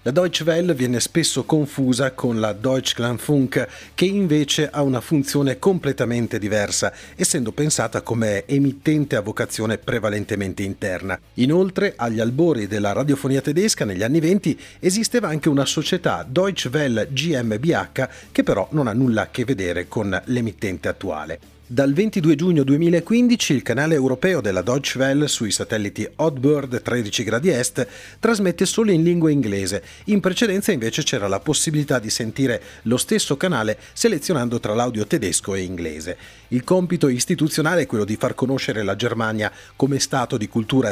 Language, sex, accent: Italian, male, native